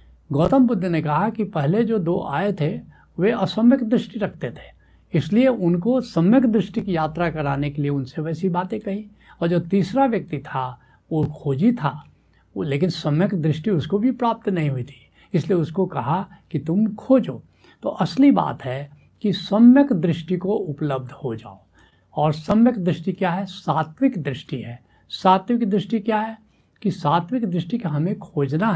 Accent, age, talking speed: native, 70-89, 170 wpm